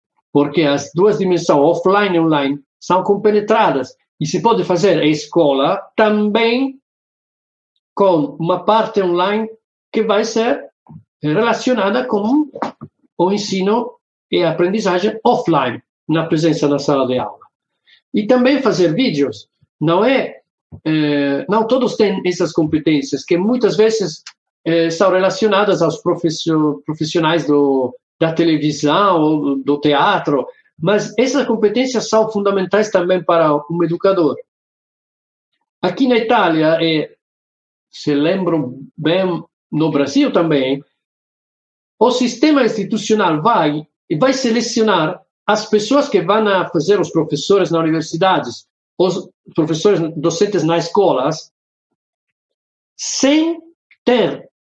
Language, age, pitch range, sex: Portuguese, 50-69, 160-220 Hz, male